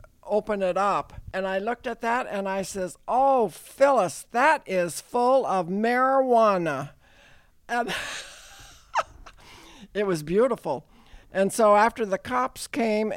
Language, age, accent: English, 60-79, American